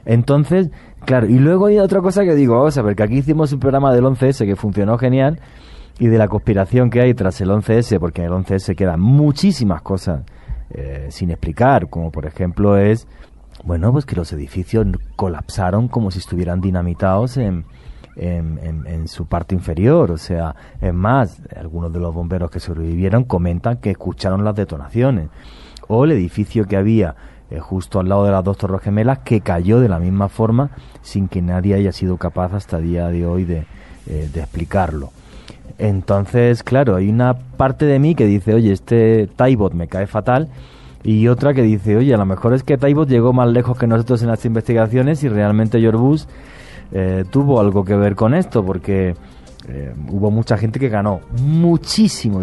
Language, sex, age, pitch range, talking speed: English, male, 30-49, 90-125 Hz, 185 wpm